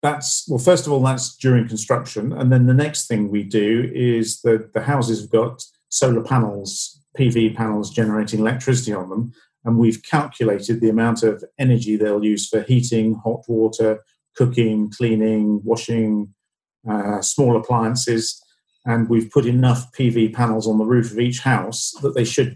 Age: 50-69